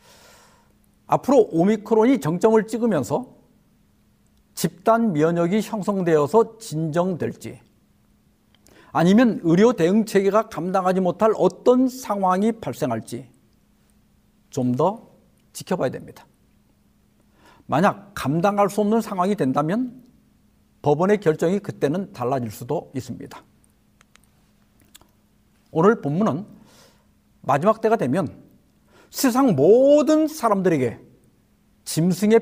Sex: male